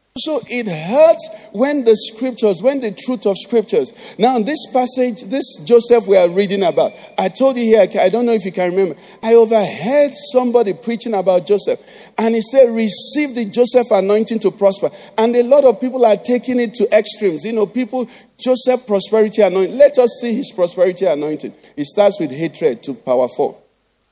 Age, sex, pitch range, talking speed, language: 50-69, male, 200-260 Hz, 185 wpm, English